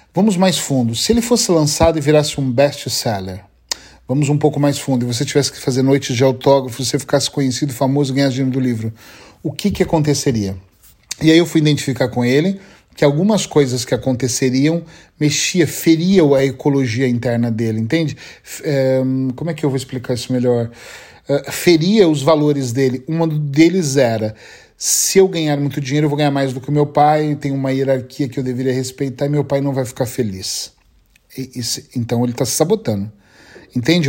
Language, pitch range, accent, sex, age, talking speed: Portuguese, 130-160 Hz, Brazilian, male, 40-59, 185 wpm